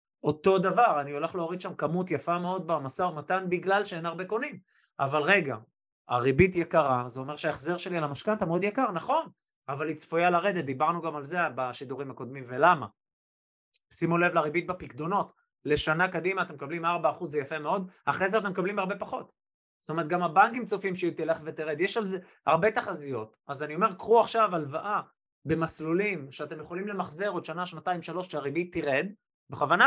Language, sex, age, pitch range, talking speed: Hebrew, male, 20-39, 150-190 Hz, 155 wpm